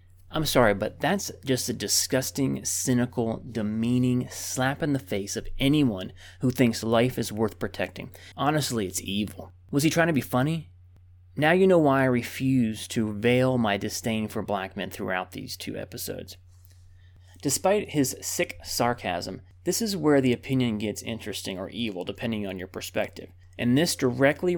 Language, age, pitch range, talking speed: English, 30-49, 100-145 Hz, 165 wpm